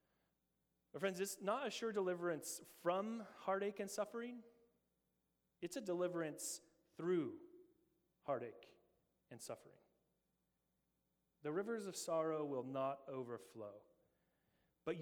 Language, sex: English, male